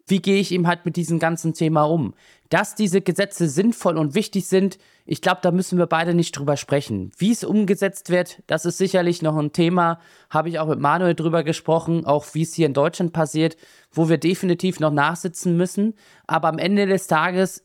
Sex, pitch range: male, 155-190 Hz